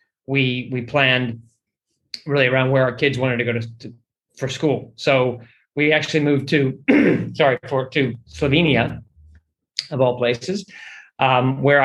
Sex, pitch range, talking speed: male, 120-145 Hz, 145 wpm